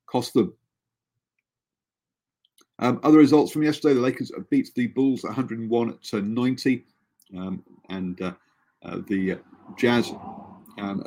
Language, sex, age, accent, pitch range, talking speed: English, male, 40-59, British, 100-125 Hz, 120 wpm